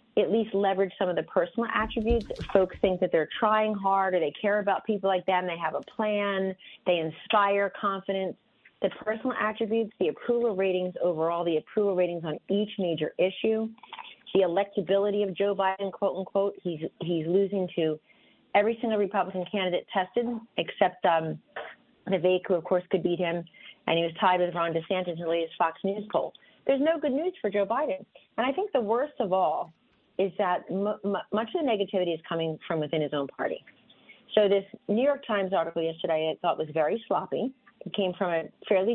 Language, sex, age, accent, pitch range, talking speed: English, female, 40-59, American, 170-210 Hz, 195 wpm